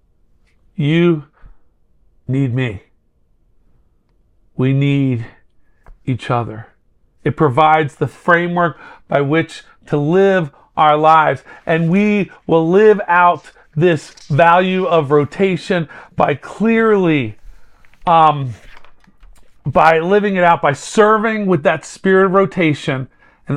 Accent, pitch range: American, 150-185 Hz